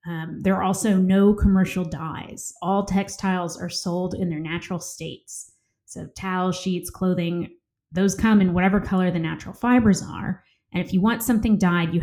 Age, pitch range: 20-39, 170-195 Hz